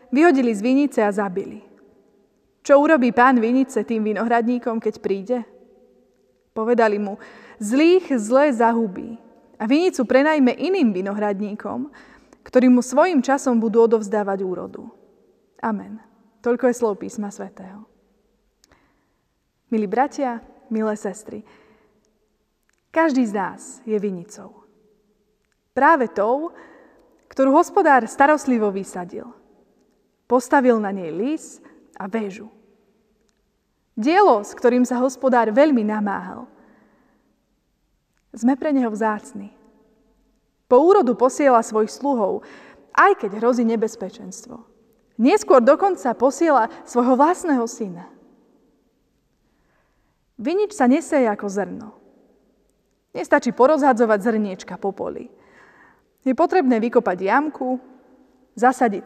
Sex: female